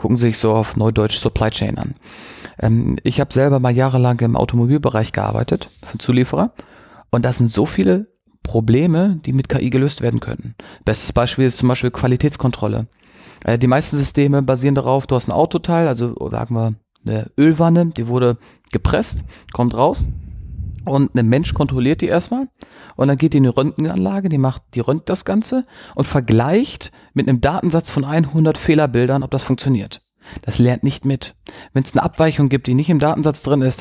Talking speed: 180 wpm